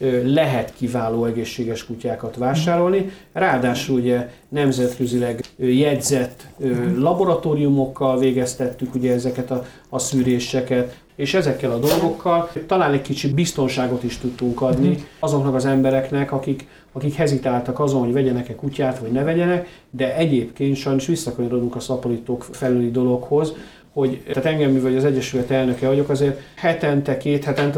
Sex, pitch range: male, 125-145 Hz